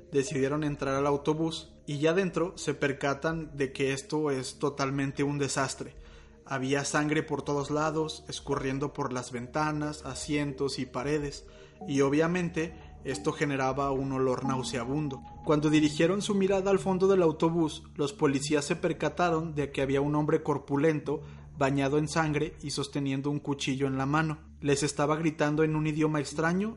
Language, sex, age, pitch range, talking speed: Spanish, male, 30-49, 140-160 Hz, 155 wpm